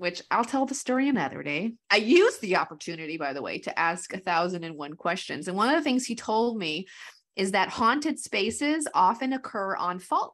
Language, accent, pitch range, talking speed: English, American, 175-225 Hz, 215 wpm